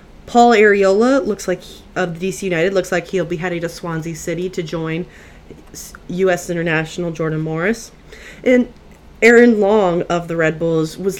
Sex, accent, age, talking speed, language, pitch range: female, American, 30-49, 155 wpm, English, 165-195 Hz